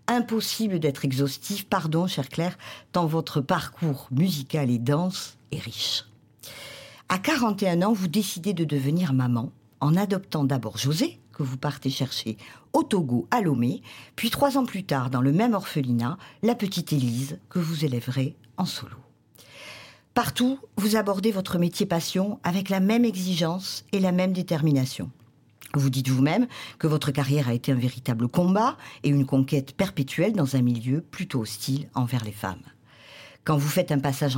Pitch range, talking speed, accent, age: 125-185 Hz, 160 wpm, French, 50-69